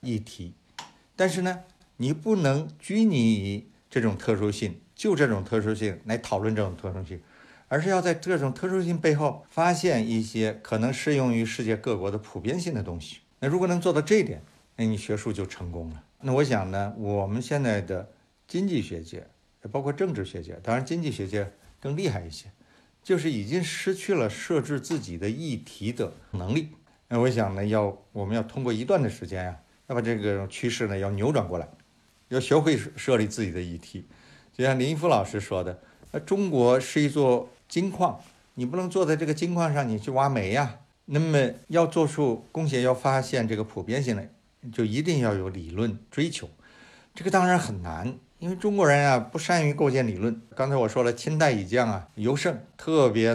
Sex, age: male, 60-79